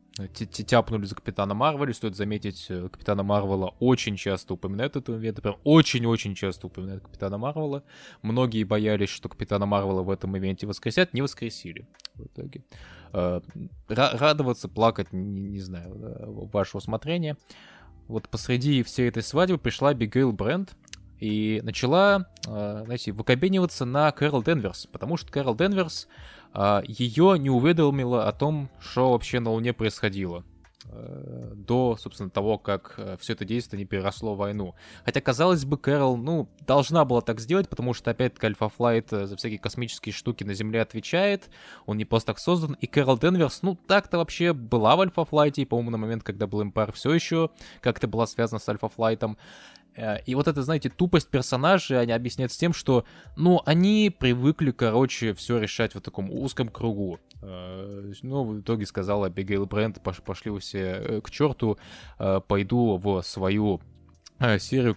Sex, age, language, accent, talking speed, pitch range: male, 20-39, Russian, native, 145 wpm, 100-135 Hz